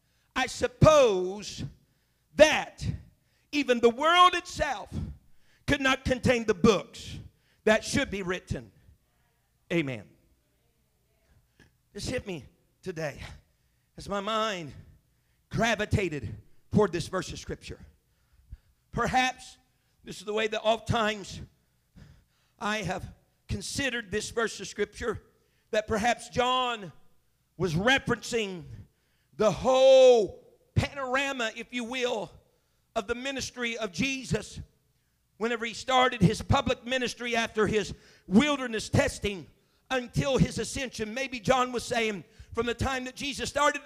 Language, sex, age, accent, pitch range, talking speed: English, male, 50-69, American, 205-255 Hz, 115 wpm